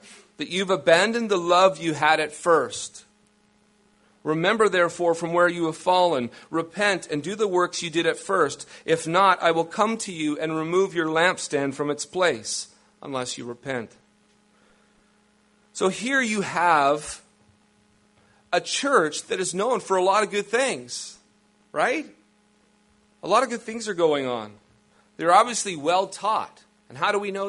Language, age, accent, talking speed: English, 40-59, American, 165 wpm